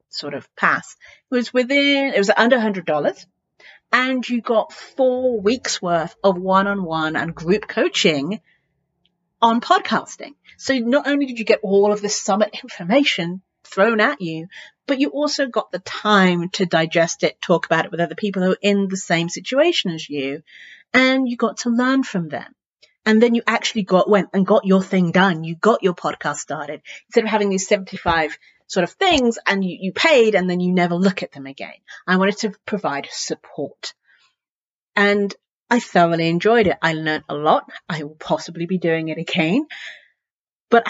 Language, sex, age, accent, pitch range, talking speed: English, female, 40-59, British, 165-225 Hz, 185 wpm